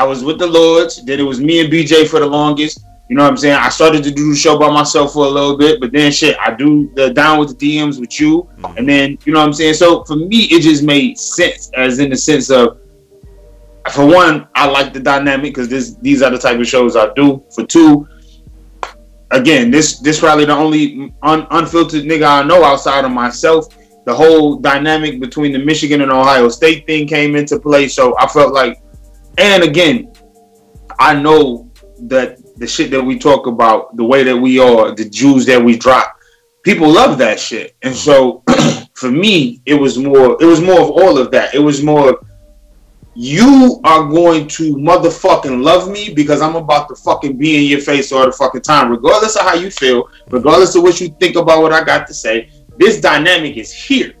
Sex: male